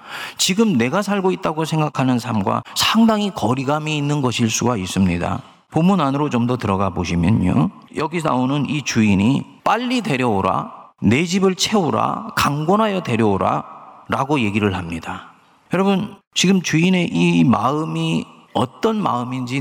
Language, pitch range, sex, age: Korean, 100-145 Hz, male, 40-59